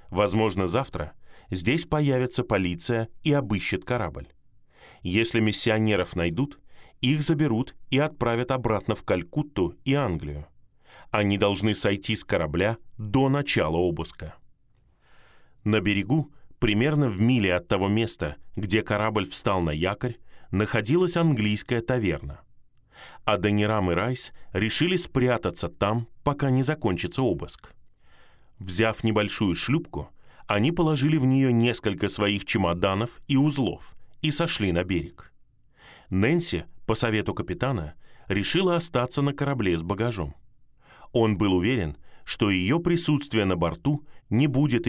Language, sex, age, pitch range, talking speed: Russian, male, 20-39, 95-130 Hz, 120 wpm